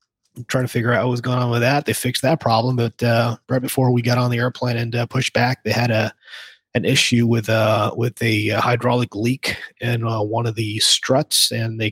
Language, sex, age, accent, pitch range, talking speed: English, male, 30-49, American, 110-125 Hz, 230 wpm